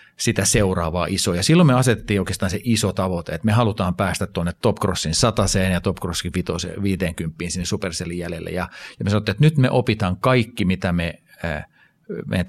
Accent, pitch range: native, 90-110 Hz